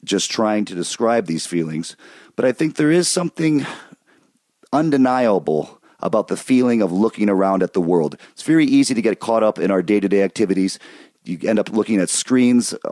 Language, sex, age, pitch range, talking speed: English, male, 40-59, 95-130 Hz, 180 wpm